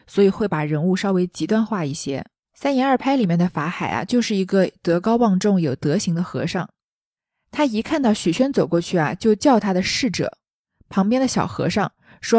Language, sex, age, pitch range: Chinese, female, 20-39, 180-260 Hz